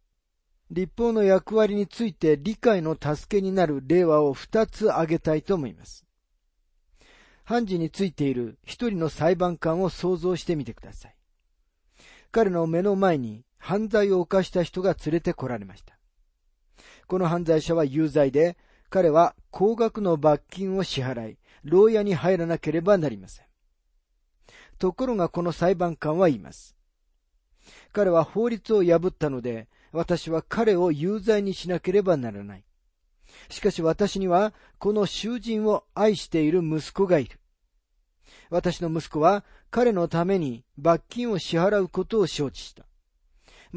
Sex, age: male, 40-59